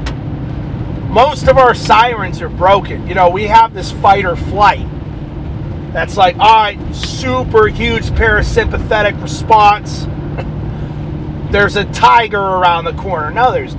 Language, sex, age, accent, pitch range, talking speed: English, male, 40-59, American, 100-155 Hz, 130 wpm